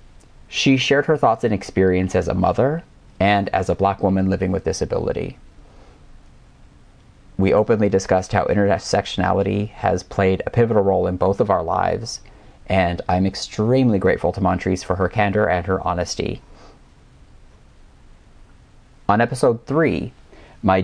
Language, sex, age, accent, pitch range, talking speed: English, male, 30-49, American, 90-105 Hz, 140 wpm